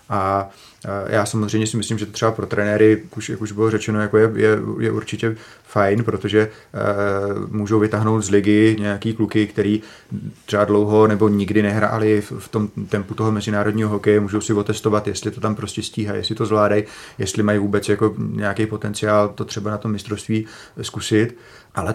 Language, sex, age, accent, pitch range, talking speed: Czech, male, 30-49, native, 105-115 Hz, 180 wpm